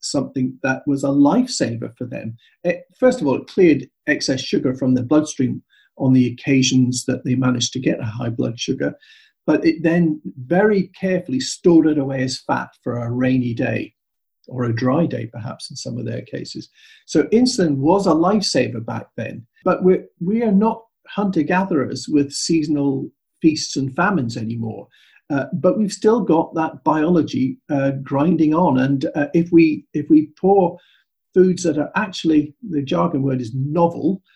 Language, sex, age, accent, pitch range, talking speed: English, male, 50-69, British, 130-175 Hz, 170 wpm